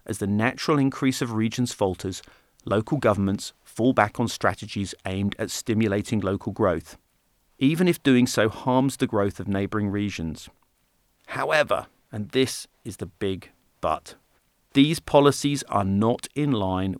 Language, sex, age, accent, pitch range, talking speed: English, male, 40-59, British, 95-120 Hz, 145 wpm